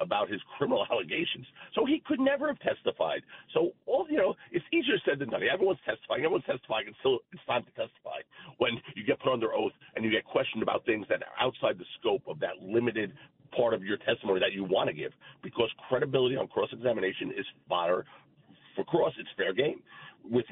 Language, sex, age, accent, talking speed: English, male, 50-69, American, 200 wpm